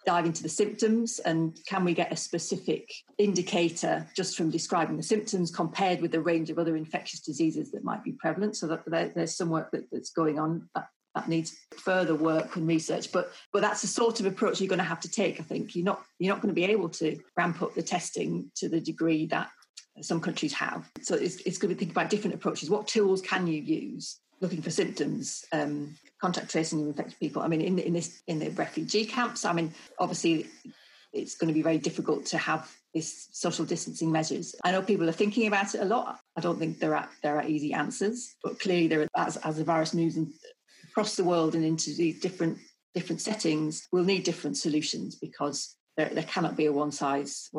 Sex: female